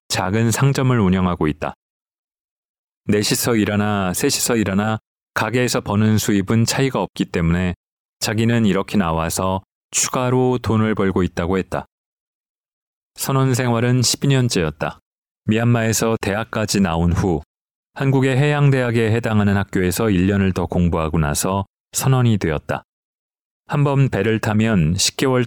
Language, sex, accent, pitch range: Korean, male, native, 95-120 Hz